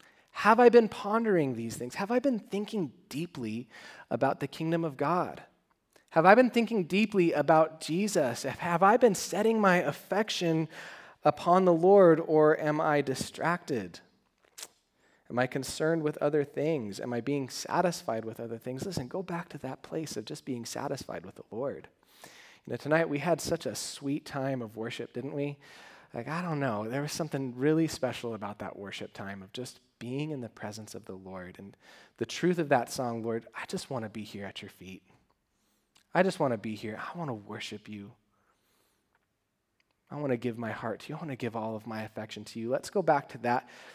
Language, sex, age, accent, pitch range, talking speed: English, male, 30-49, American, 115-160 Hz, 190 wpm